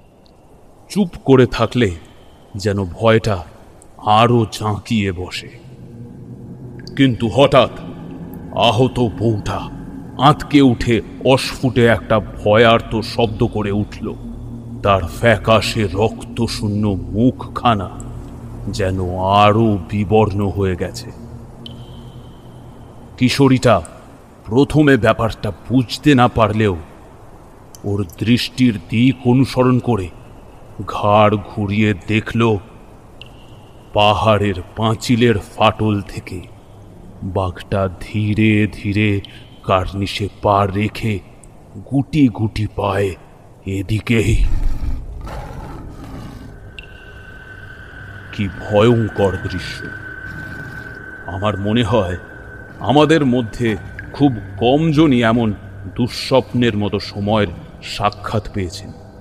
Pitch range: 100-120 Hz